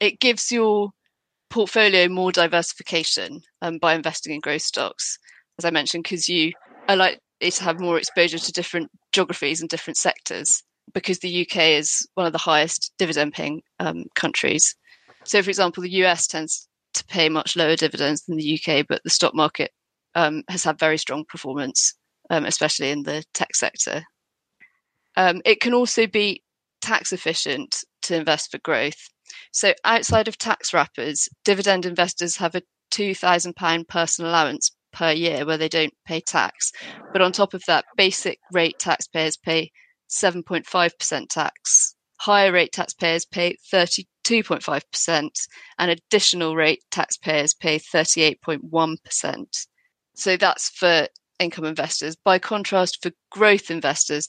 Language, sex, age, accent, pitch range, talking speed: English, female, 30-49, British, 160-190 Hz, 145 wpm